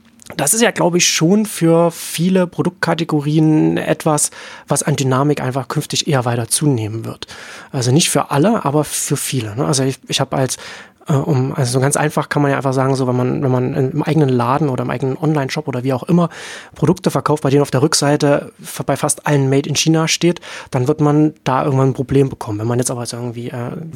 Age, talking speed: 30-49, 215 wpm